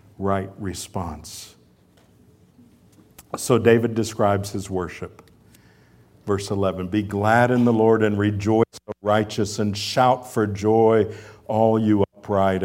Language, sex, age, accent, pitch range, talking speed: English, male, 60-79, American, 90-110 Hz, 120 wpm